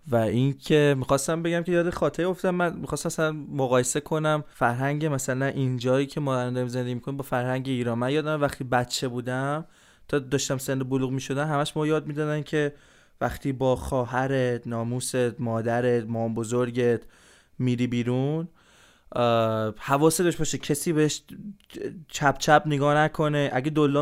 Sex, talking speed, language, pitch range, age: male, 140 wpm, Persian, 130-150 Hz, 20-39